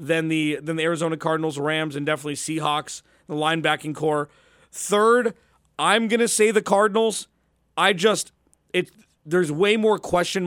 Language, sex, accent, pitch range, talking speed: English, male, American, 155-185 Hz, 150 wpm